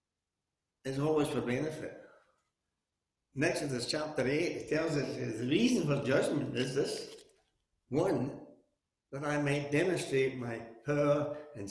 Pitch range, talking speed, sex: 120-165 Hz, 135 wpm, male